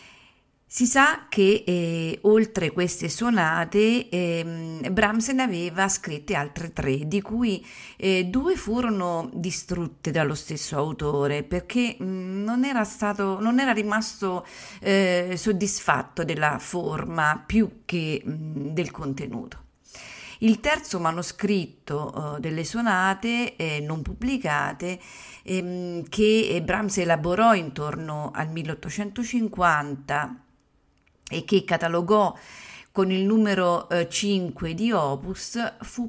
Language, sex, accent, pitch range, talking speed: Italian, female, native, 160-215 Hz, 110 wpm